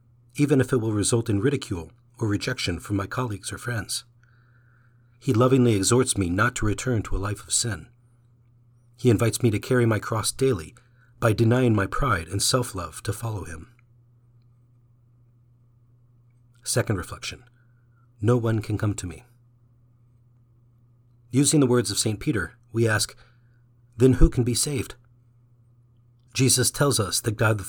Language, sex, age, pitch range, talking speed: English, male, 40-59, 110-125 Hz, 150 wpm